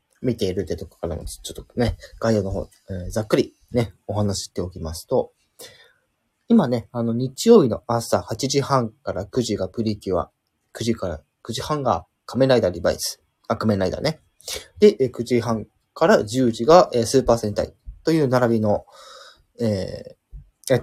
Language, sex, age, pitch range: Japanese, male, 20-39, 100-135 Hz